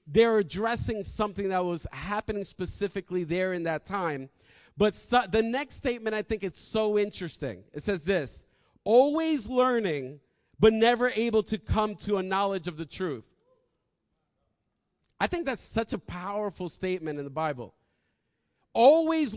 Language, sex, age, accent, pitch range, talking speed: English, male, 40-59, American, 190-255 Hz, 145 wpm